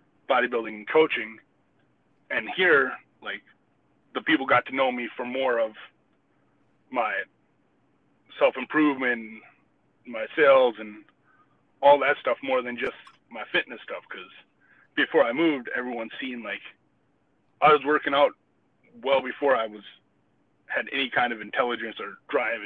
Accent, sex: American, male